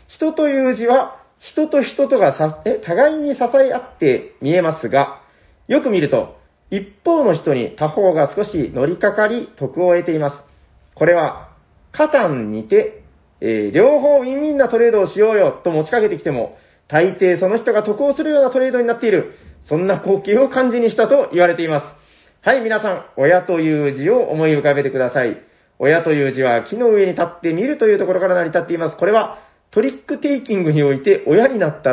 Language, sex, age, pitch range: Japanese, male, 40-59, 155-265 Hz